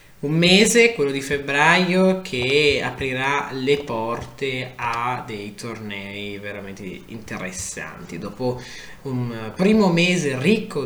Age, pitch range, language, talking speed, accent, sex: 20-39, 110-150 Hz, Italian, 105 wpm, native, male